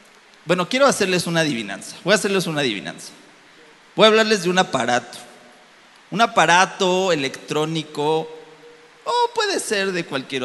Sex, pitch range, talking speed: male, 150-200 Hz, 140 wpm